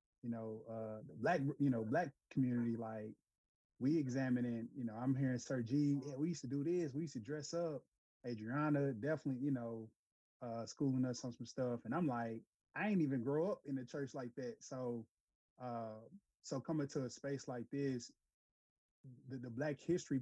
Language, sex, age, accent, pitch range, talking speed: English, male, 30-49, American, 120-145 Hz, 195 wpm